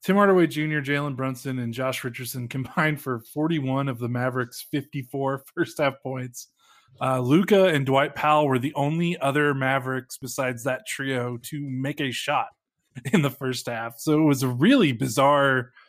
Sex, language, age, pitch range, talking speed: male, English, 20-39, 130-150 Hz, 170 wpm